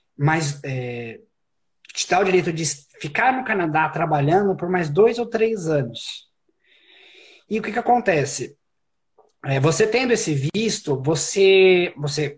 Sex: male